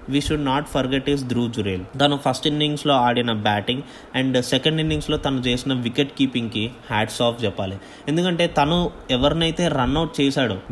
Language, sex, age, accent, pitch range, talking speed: Telugu, male, 20-39, native, 135-180 Hz, 150 wpm